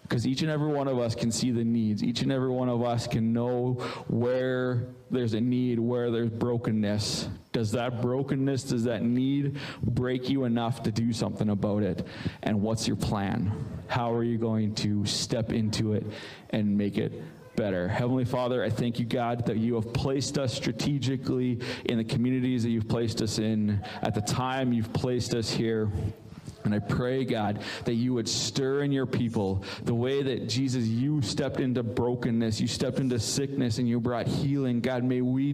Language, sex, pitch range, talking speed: English, male, 115-135 Hz, 190 wpm